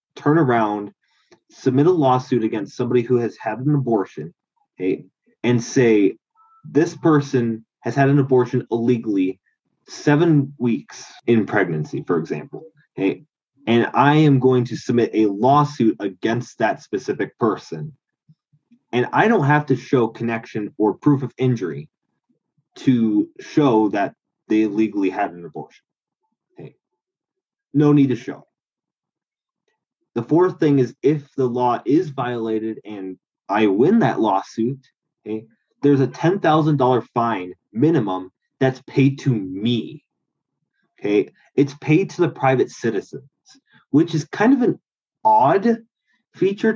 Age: 20-39